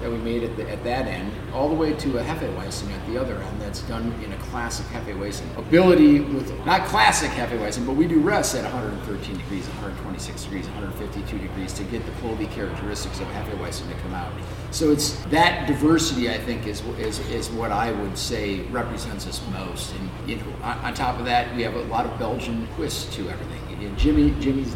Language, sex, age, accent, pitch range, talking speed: English, male, 50-69, American, 110-140 Hz, 210 wpm